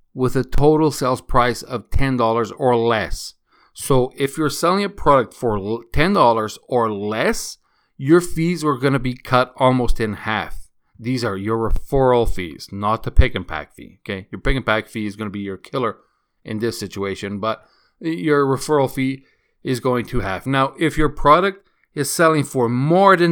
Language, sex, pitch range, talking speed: English, male, 110-140 Hz, 185 wpm